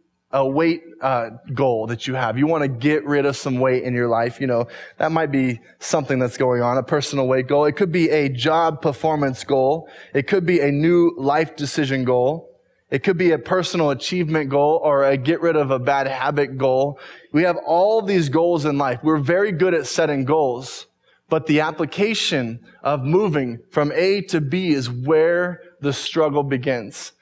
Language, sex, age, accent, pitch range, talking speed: English, male, 20-39, American, 140-175 Hz, 195 wpm